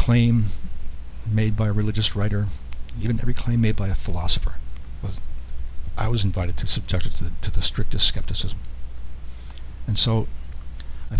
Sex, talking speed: male, 155 wpm